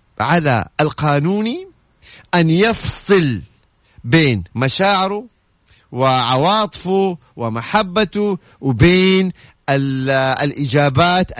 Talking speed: 55 wpm